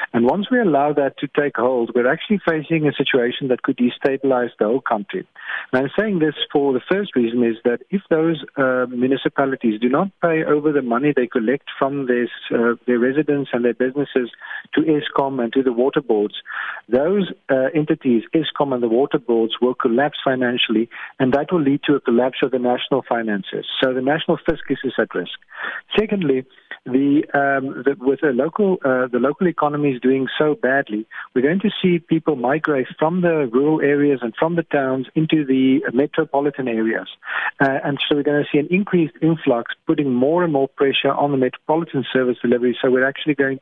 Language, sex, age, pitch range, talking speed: English, male, 50-69, 125-150 Hz, 195 wpm